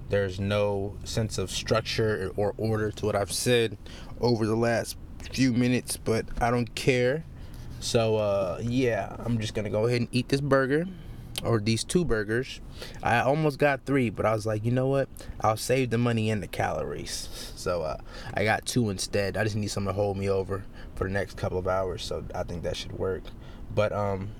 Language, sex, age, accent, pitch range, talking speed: English, male, 20-39, American, 100-125 Hz, 205 wpm